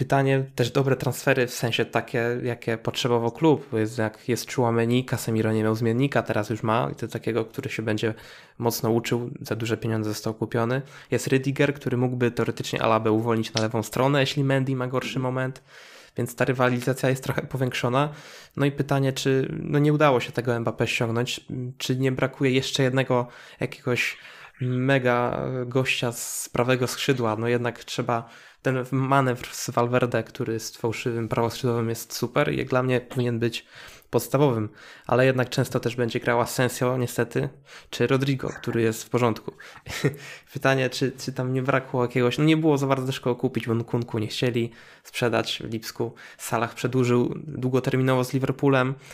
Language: Polish